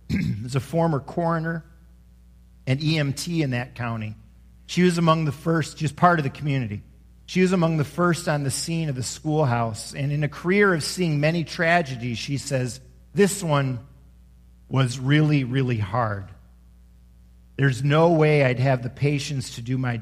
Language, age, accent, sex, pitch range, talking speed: English, 50-69, American, male, 120-155 Hz, 170 wpm